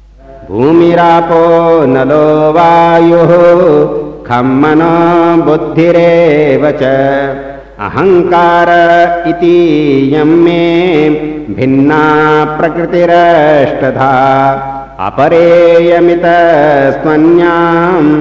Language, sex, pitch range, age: Hindi, male, 135-170 Hz, 50-69